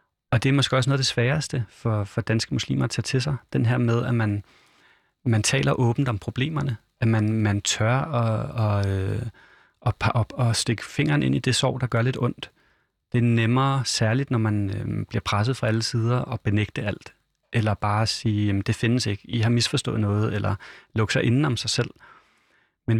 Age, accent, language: 30-49, native, Danish